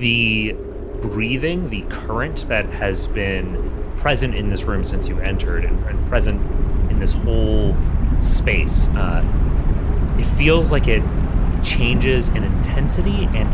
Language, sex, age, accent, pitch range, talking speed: English, male, 30-49, American, 80-110 Hz, 130 wpm